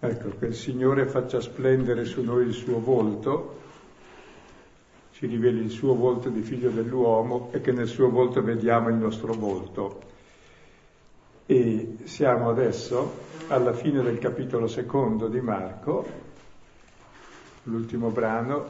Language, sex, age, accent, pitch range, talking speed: Italian, male, 50-69, native, 115-130 Hz, 130 wpm